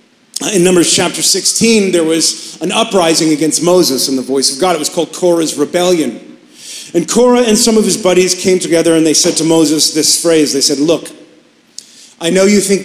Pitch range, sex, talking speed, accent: 155-200 Hz, male, 200 wpm, American